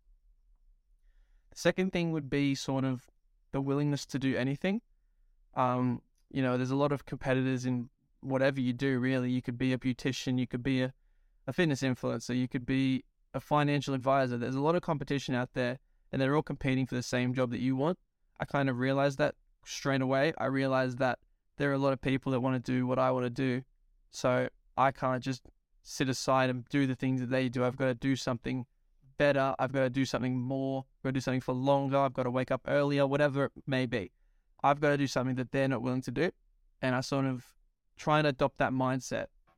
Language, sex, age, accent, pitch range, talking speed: English, male, 20-39, Australian, 130-140 Hz, 225 wpm